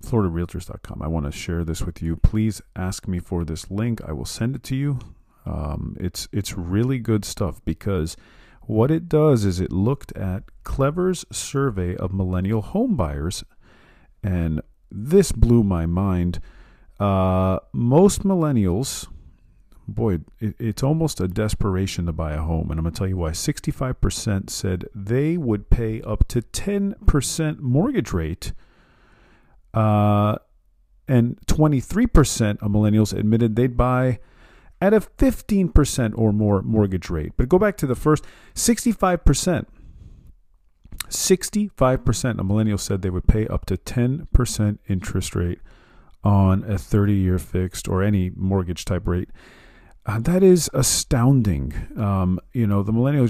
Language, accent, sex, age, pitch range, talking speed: English, American, male, 40-59, 90-125 Hz, 140 wpm